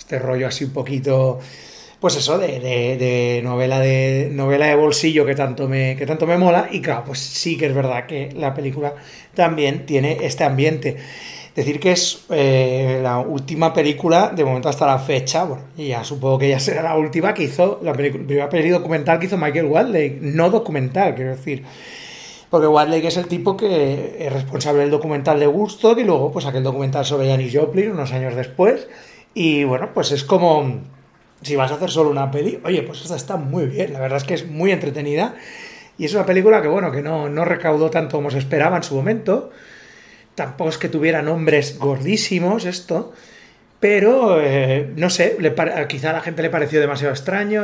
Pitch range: 140-175 Hz